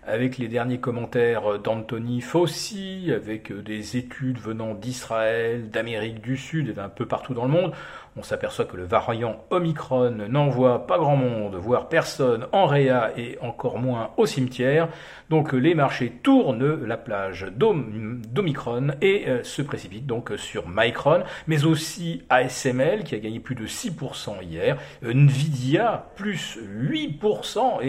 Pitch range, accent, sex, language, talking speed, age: 115-160 Hz, French, male, French, 140 wpm, 40-59